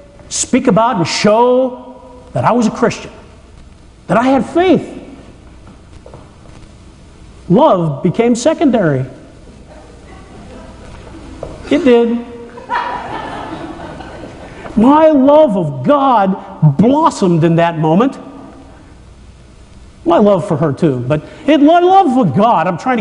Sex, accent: male, American